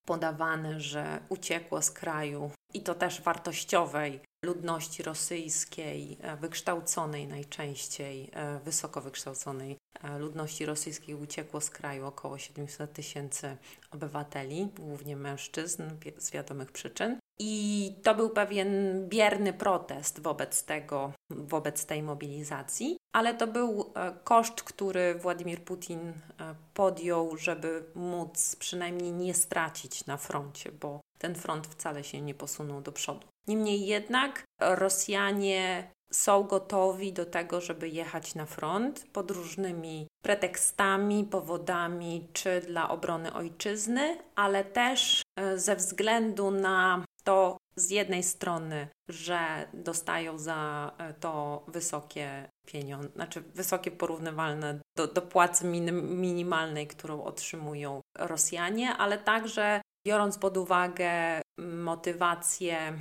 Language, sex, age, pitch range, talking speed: Polish, female, 30-49, 155-195 Hz, 110 wpm